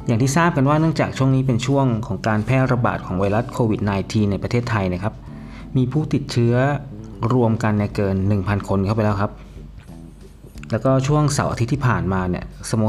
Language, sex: Thai, male